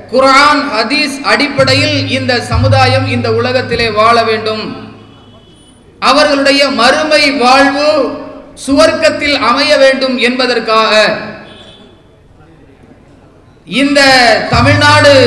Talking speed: 70 wpm